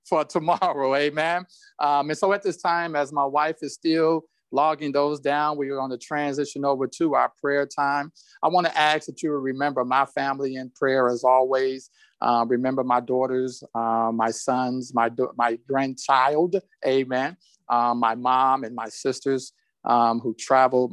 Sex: male